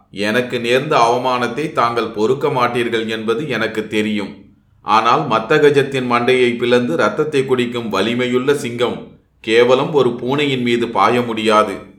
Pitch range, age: 105-125 Hz, 30-49